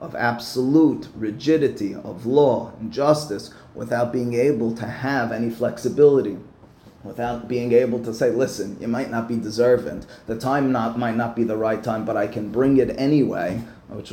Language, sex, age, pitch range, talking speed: English, male, 30-49, 115-145 Hz, 175 wpm